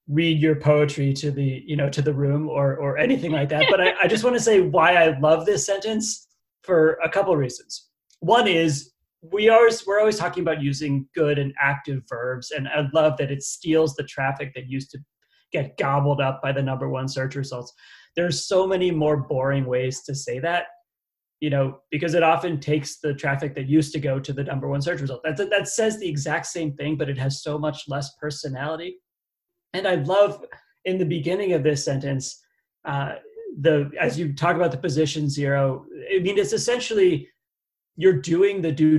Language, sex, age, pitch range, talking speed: English, male, 30-49, 140-180 Hz, 205 wpm